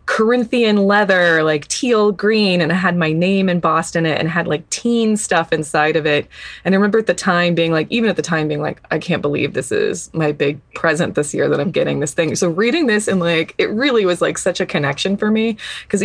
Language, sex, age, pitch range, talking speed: English, female, 20-39, 155-195 Hz, 245 wpm